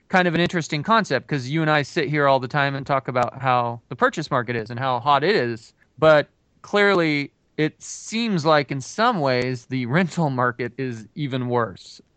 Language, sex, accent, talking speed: English, male, American, 200 wpm